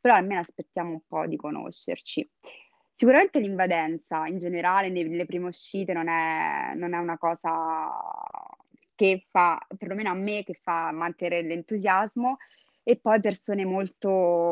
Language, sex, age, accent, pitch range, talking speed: Italian, female, 20-39, native, 185-230 Hz, 135 wpm